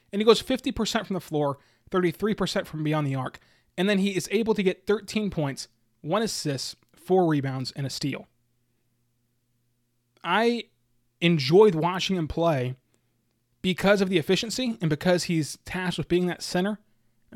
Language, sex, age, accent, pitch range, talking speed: English, male, 20-39, American, 140-185 Hz, 160 wpm